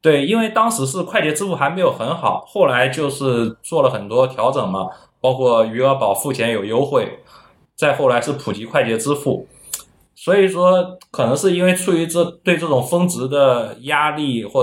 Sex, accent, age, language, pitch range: male, native, 20-39, Chinese, 125-170 Hz